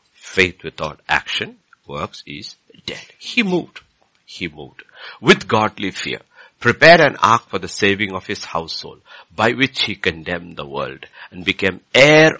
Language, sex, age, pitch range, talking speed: English, male, 60-79, 85-130 Hz, 150 wpm